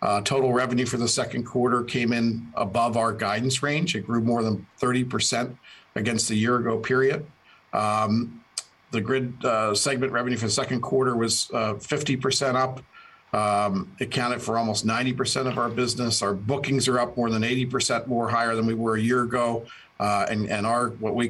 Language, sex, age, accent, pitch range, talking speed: English, male, 50-69, American, 110-125 Hz, 190 wpm